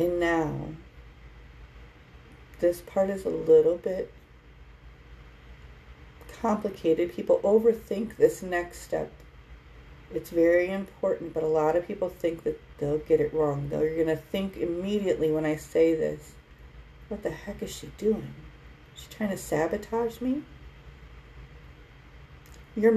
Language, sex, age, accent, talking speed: English, female, 40-59, American, 125 wpm